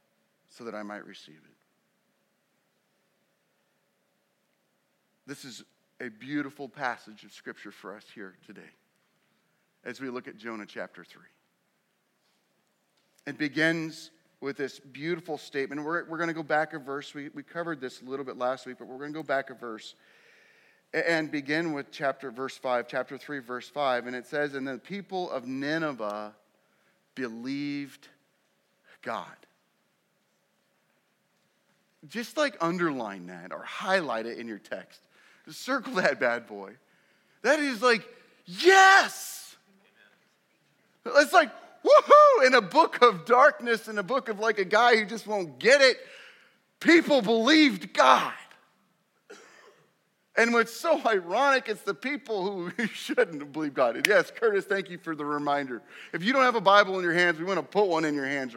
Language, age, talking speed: English, 40-59, 155 wpm